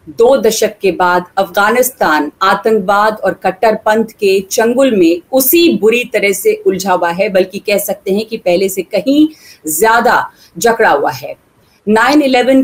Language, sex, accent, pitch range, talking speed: English, female, Indian, 190-245 Hz, 145 wpm